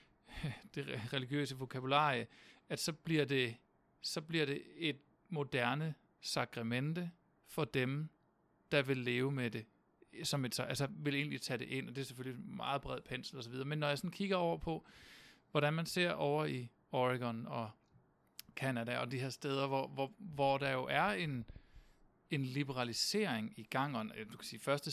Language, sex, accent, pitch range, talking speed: Danish, male, native, 125-155 Hz, 180 wpm